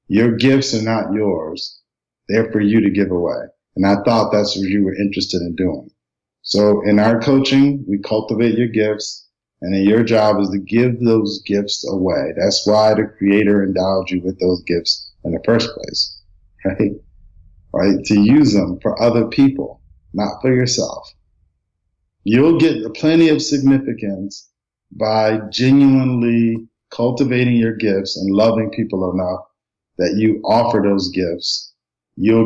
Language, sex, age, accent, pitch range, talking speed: English, male, 50-69, American, 95-115 Hz, 155 wpm